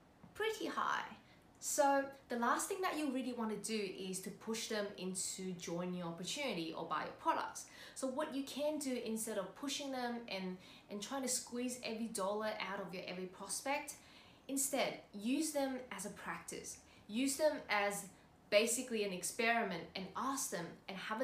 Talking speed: 175 wpm